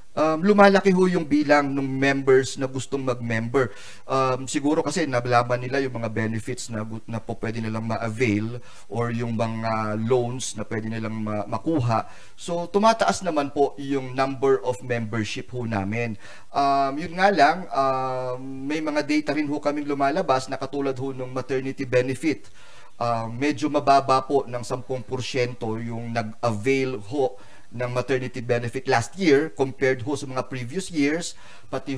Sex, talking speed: male, 150 wpm